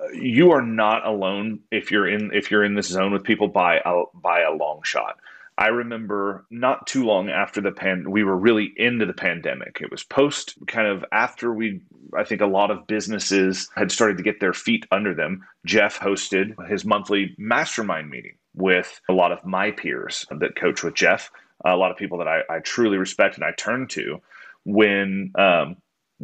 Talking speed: 195 wpm